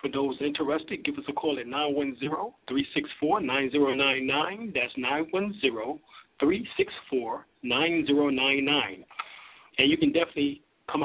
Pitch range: 135-150 Hz